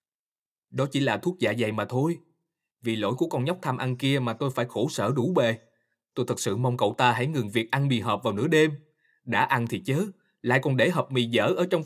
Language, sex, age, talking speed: Vietnamese, male, 20-39, 255 wpm